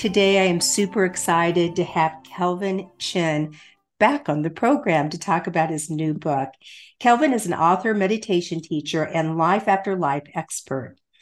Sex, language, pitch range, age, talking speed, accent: female, English, 150-185 Hz, 50-69, 150 wpm, American